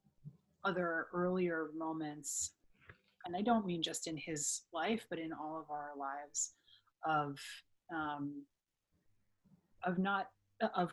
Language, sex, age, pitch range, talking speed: English, female, 30-49, 150-200 Hz, 120 wpm